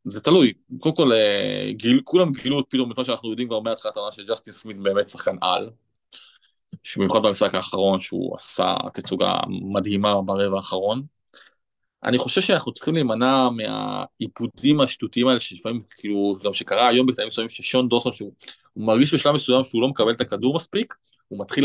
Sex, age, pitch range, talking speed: male, 20-39, 105-130 Hz, 160 wpm